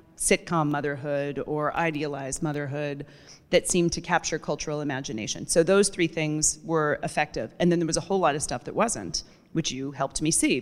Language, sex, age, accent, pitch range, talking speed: English, female, 30-49, American, 150-175 Hz, 185 wpm